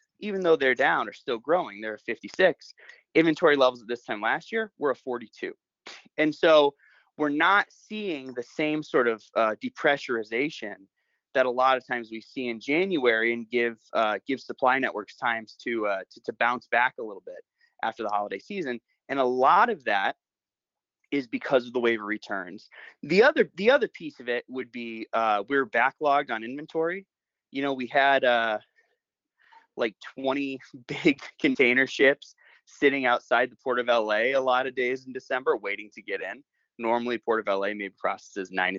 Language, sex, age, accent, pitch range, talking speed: English, male, 20-39, American, 115-150 Hz, 185 wpm